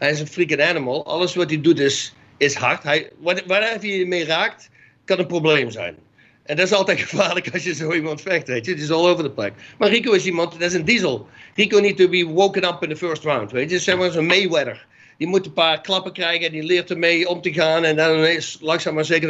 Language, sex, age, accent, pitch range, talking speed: Dutch, male, 50-69, Dutch, 160-190 Hz, 250 wpm